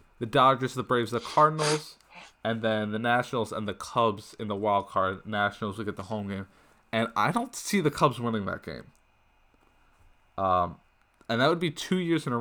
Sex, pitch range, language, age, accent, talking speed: male, 100-140 Hz, English, 20-39, American, 200 wpm